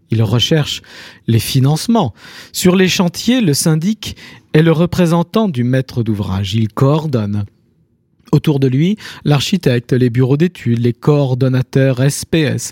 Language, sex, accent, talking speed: French, male, French, 125 wpm